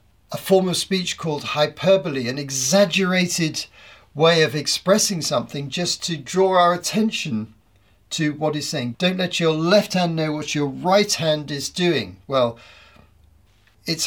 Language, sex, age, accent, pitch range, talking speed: English, male, 50-69, British, 105-170 Hz, 150 wpm